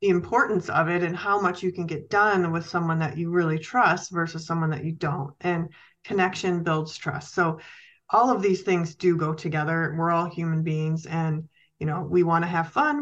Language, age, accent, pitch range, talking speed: English, 30-49, American, 160-185 Hz, 210 wpm